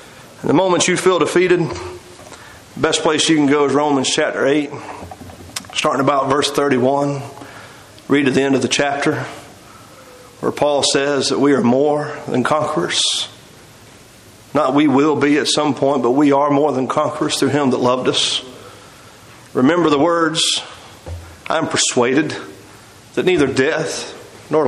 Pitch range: 130-165 Hz